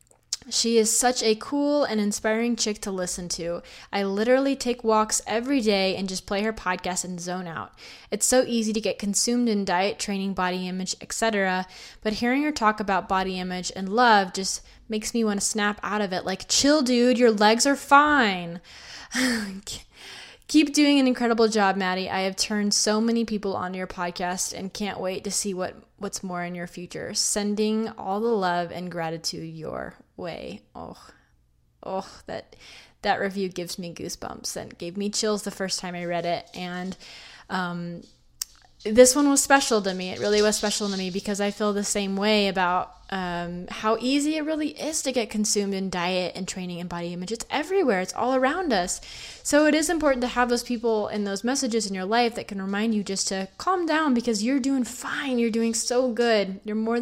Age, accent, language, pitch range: 20-39, American, English, 185-235 Hz